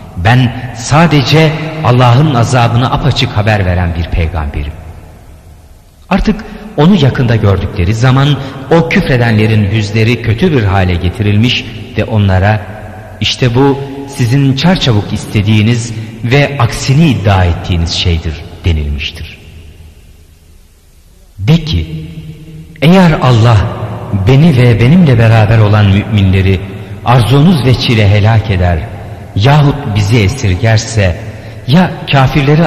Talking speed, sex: 100 wpm, male